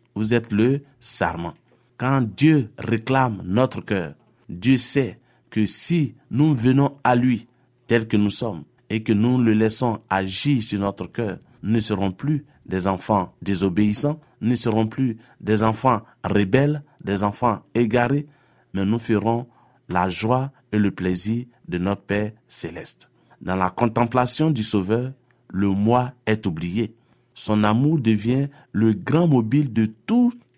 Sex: male